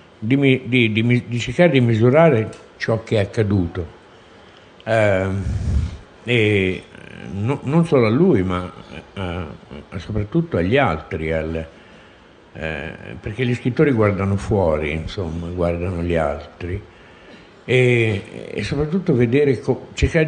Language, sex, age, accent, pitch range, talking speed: Italian, male, 60-79, native, 95-140 Hz, 120 wpm